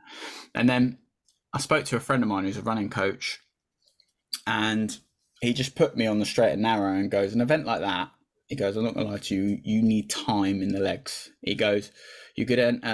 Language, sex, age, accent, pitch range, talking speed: English, male, 10-29, British, 100-120 Hz, 225 wpm